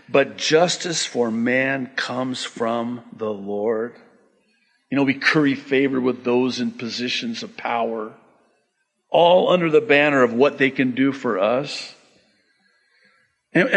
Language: English